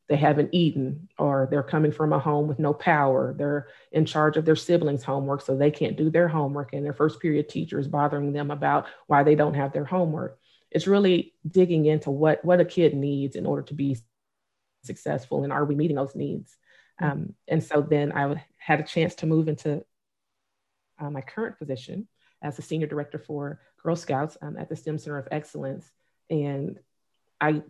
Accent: American